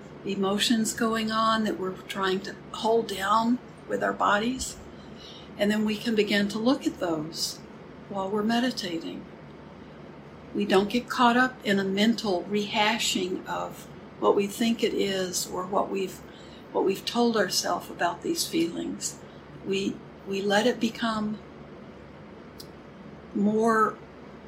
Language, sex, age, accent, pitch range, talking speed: English, female, 60-79, American, 180-225 Hz, 135 wpm